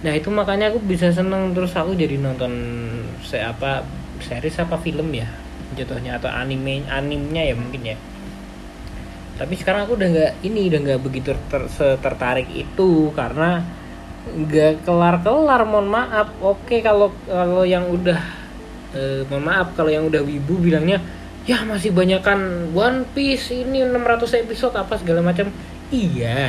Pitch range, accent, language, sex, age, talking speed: 120-185 Hz, native, Indonesian, male, 20-39, 150 wpm